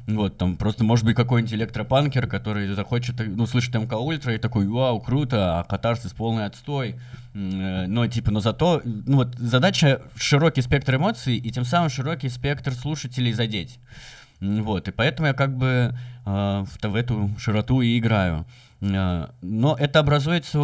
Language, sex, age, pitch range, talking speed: Russian, male, 20-39, 100-125 Hz, 160 wpm